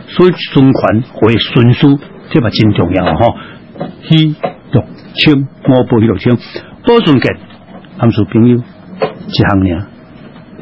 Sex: male